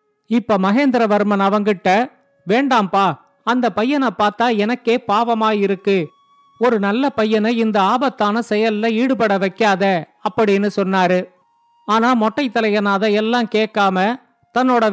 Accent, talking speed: native, 100 wpm